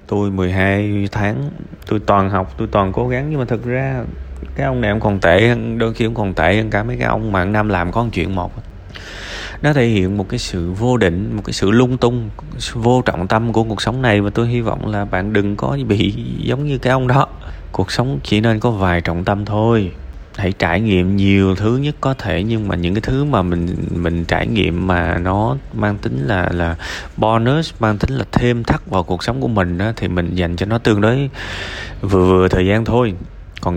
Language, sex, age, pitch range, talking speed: Vietnamese, male, 20-39, 90-115 Hz, 230 wpm